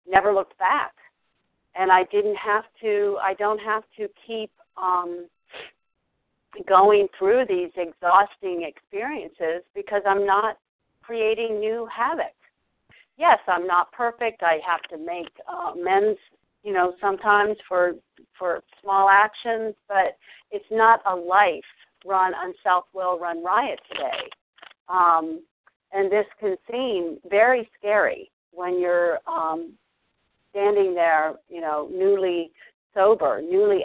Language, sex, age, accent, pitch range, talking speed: English, female, 50-69, American, 175-220 Hz, 125 wpm